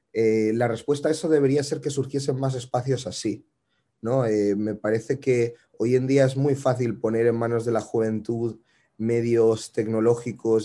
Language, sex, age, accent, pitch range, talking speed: Spanish, male, 30-49, Spanish, 105-120 Hz, 175 wpm